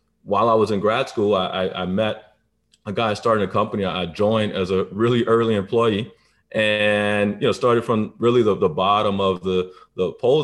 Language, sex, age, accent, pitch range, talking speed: English, male, 30-49, American, 95-115 Hz, 195 wpm